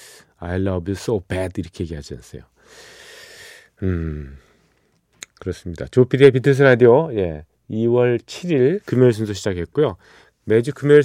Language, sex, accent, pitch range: Korean, male, native, 85-130 Hz